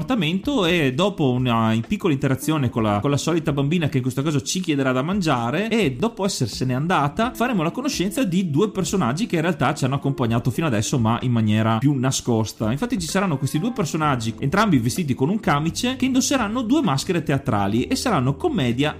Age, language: 30-49, Italian